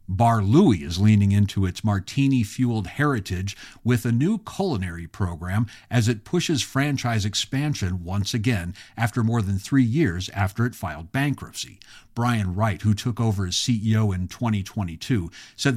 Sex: male